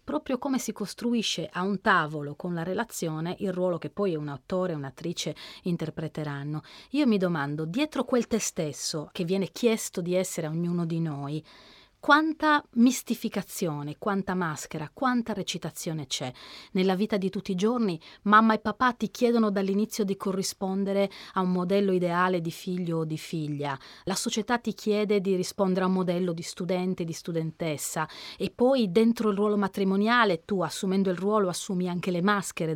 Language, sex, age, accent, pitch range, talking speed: Italian, female, 30-49, native, 170-220 Hz, 170 wpm